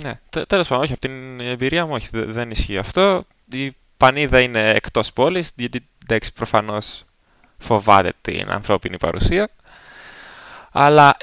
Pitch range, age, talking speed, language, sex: 95-130 Hz, 20-39, 135 wpm, Greek, male